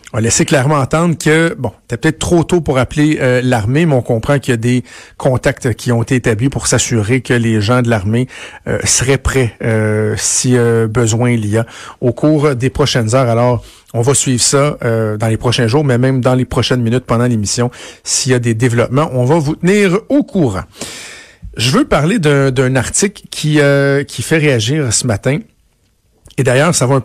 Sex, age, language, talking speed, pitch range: male, 50-69, French, 215 wpm, 120-150 Hz